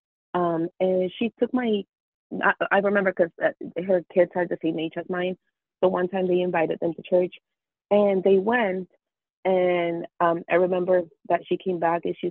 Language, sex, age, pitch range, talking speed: English, female, 30-49, 170-185 Hz, 190 wpm